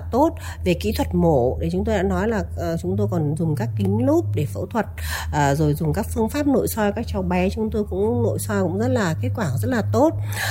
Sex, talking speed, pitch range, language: female, 250 wpm, 160-250 Hz, Vietnamese